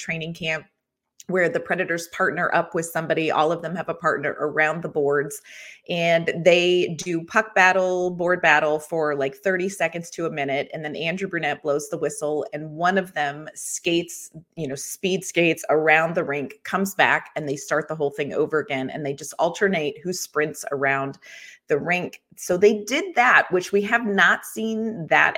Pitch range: 150-200 Hz